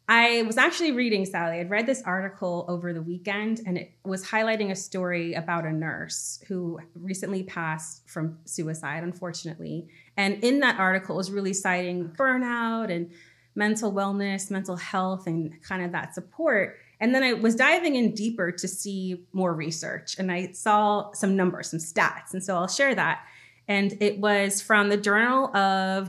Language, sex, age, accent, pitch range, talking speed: English, female, 30-49, American, 175-220 Hz, 175 wpm